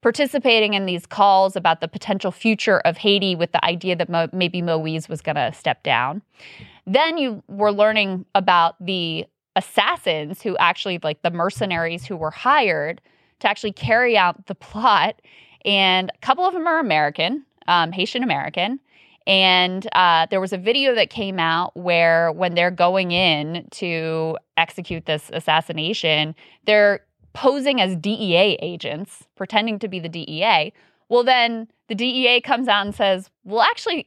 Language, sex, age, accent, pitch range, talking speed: English, female, 20-39, American, 170-220 Hz, 155 wpm